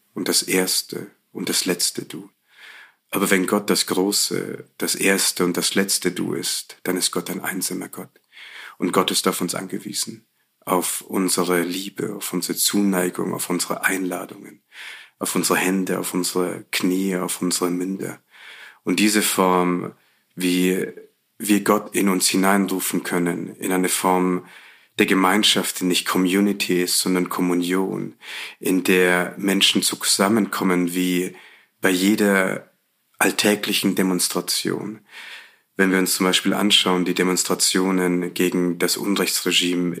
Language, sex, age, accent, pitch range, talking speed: German, male, 40-59, German, 90-95 Hz, 135 wpm